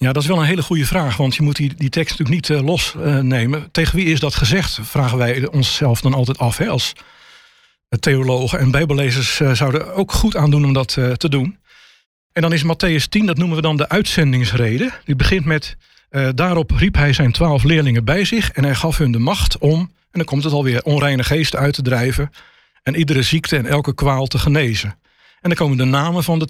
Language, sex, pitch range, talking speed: English, male, 135-165 Hz, 230 wpm